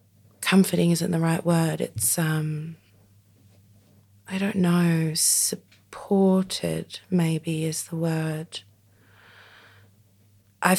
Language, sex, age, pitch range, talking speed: English, female, 20-39, 105-170 Hz, 90 wpm